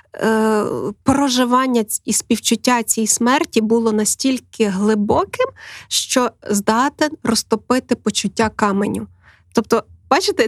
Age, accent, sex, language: 20-39, native, female, Ukrainian